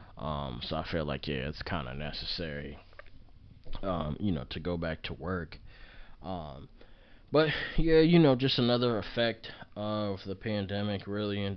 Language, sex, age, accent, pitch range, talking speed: English, male, 20-39, American, 90-110 Hz, 160 wpm